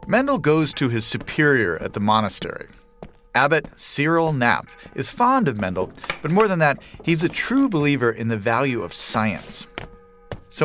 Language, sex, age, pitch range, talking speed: English, male, 40-59, 110-150 Hz, 165 wpm